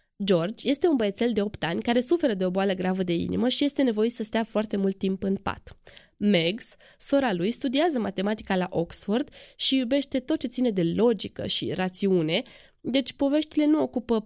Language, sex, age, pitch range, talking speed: Romanian, female, 20-39, 195-255 Hz, 190 wpm